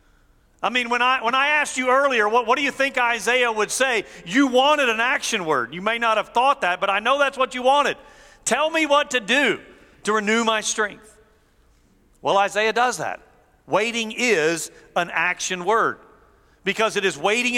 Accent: American